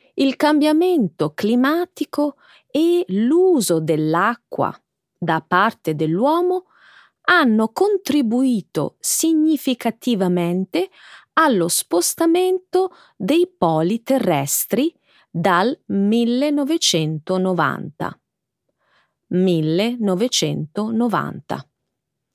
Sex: female